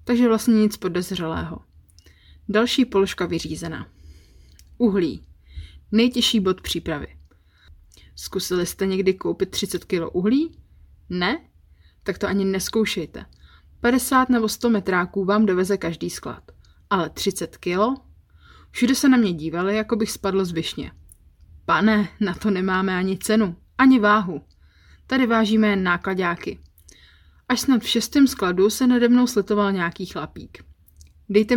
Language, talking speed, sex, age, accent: Czech, 125 wpm, female, 30-49, native